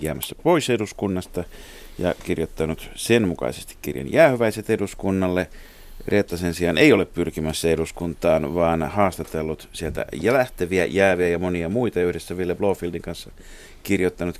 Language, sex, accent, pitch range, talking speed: Finnish, male, native, 85-110 Hz, 125 wpm